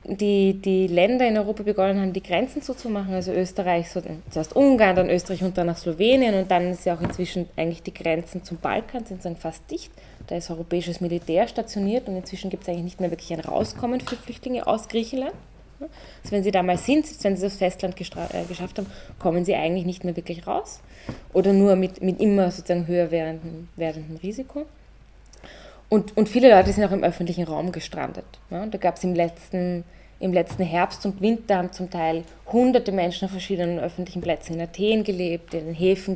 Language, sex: German, female